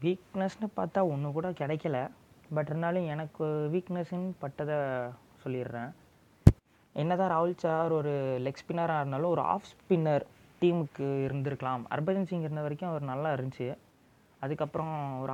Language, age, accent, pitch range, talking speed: Tamil, 20-39, native, 130-160 Hz, 130 wpm